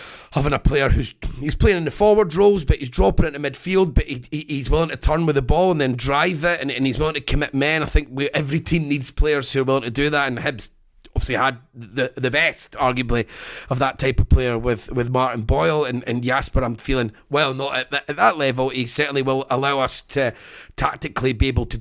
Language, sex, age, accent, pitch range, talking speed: English, male, 30-49, British, 130-155 Hz, 240 wpm